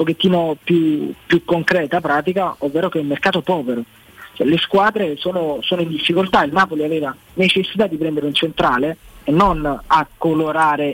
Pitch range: 150-200 Hz